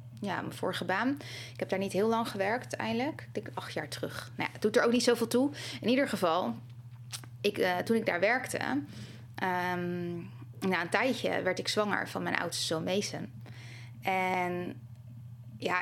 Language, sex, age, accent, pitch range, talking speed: Dutch, female, 20-39, Dutch, 120-195 Hz, 185 wpm